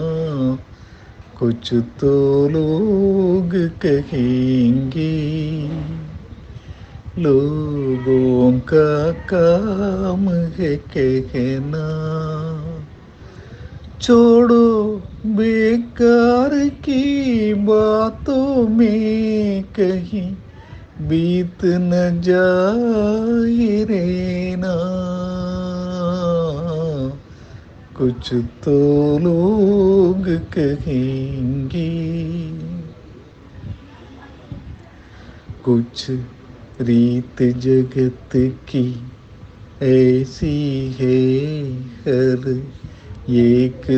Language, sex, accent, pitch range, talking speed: Tamil, male, native, 125-175 Hz, 40 wpm